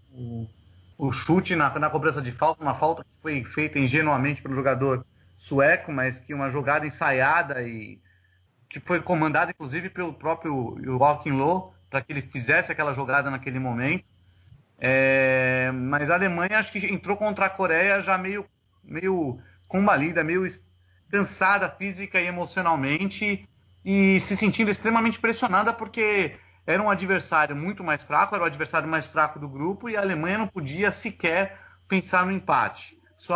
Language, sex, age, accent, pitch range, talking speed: English, male, 40-59, Brazilian, 135-190 Hz, 155 wpm